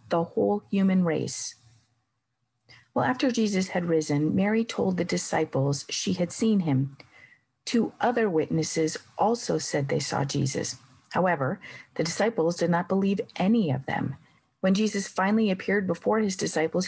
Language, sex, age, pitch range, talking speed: English, female, 40-59, 145-215 Hz, 145 wpm